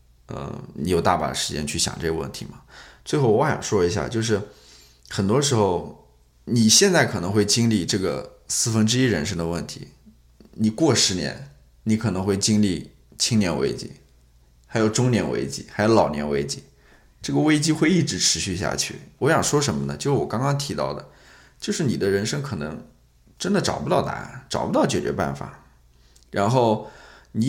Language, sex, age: Chinese, male, 20-39